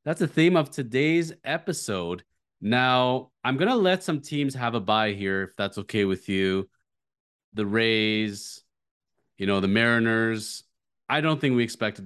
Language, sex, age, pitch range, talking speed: English, male, 30-49, 100-135 Hz, 165 wpm